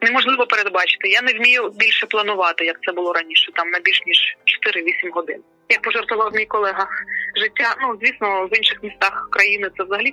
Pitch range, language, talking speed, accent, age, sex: 195-305 Hz, Ukrainian, 180 wpm, native, 20-39, female